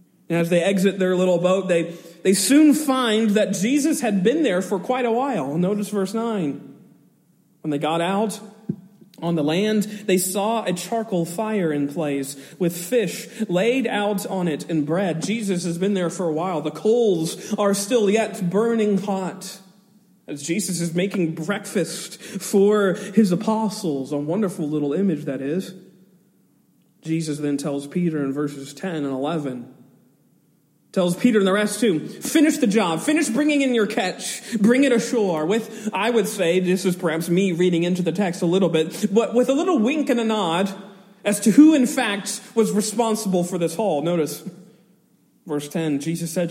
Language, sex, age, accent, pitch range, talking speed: English, male, 40-59, American, 170-215 Hz, 175 wpm